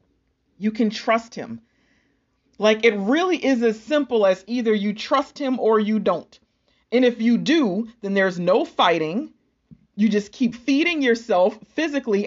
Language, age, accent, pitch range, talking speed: English, 40-59, American, 190-250 Hz, 155 wpm